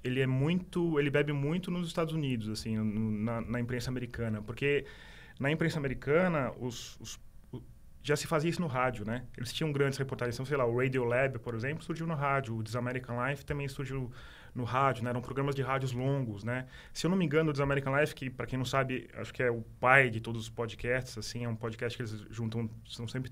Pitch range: 115-140 Hz